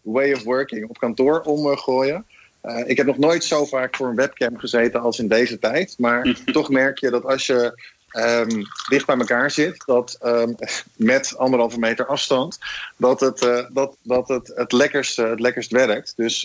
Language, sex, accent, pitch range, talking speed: Dutch, male, Dutch, 120-140 Hz, 185 wpm